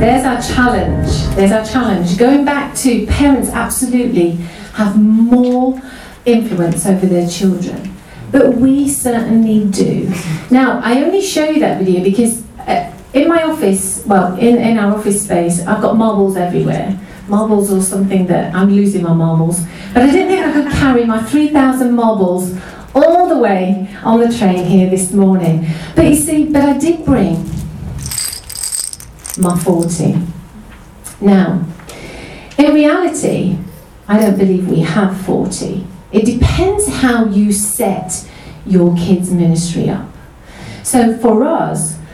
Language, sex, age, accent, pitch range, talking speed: English, female, 40-59, British, 180-240 Hz, 140 wpm